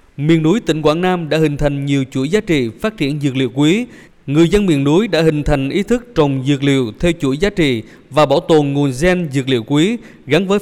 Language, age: Vietnamese, 20-39